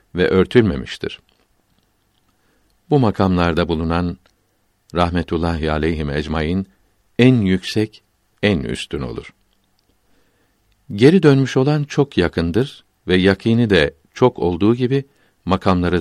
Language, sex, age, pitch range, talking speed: Turkish, male, 60-79, 90-110 Hz, 95 wpm